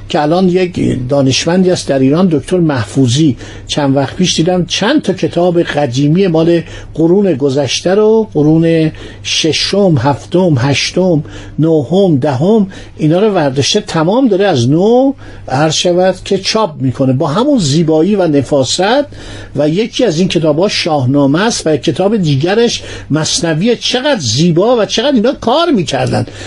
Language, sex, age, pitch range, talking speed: Persian, male, 60-79, 145-205 Hz, 145 wpm